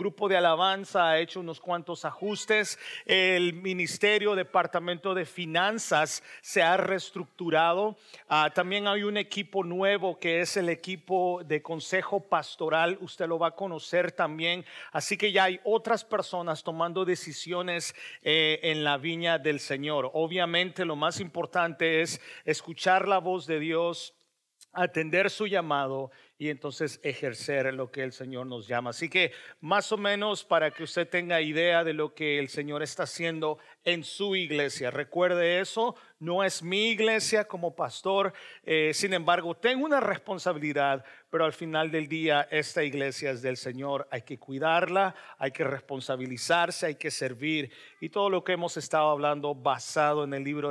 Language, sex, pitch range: Spanish, male, 155-195 Hz